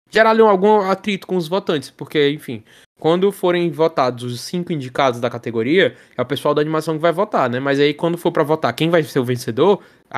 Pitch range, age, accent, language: 135-175 Hz, 10-29, Brazilian, Portuguese